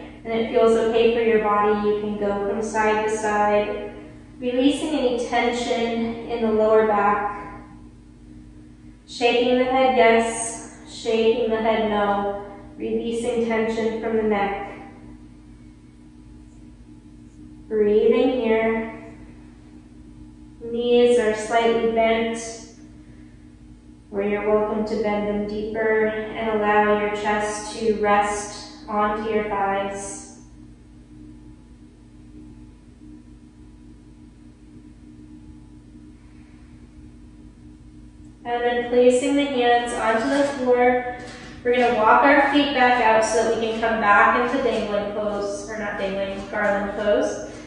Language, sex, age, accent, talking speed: English, female, 20-39, American, 105 wpm